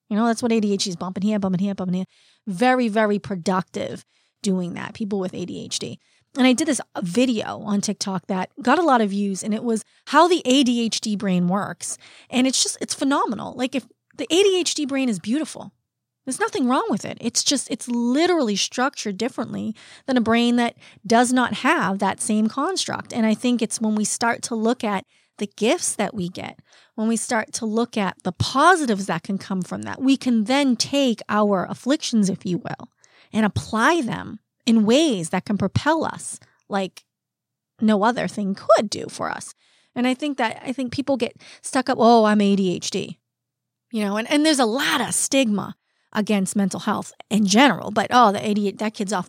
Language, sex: English, female